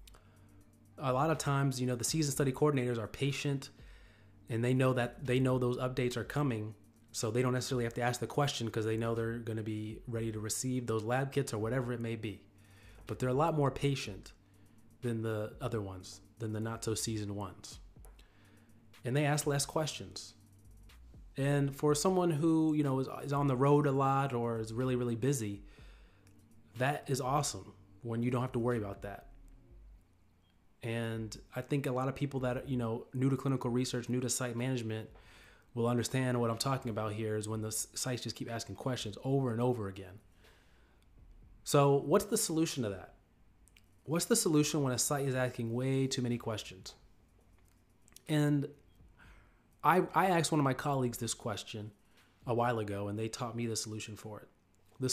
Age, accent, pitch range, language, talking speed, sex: 30-49, American, 105-135 Hz, English, 190 wpm, male